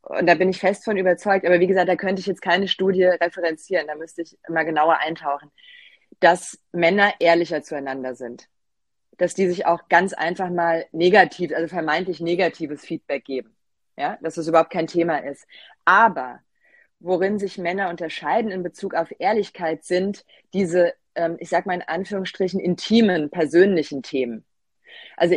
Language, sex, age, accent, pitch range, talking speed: German, female, 30-49, German, 165-195 Hz, 160 wpm